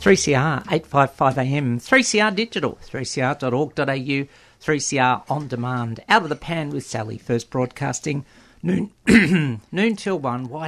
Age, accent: 50-69, Australian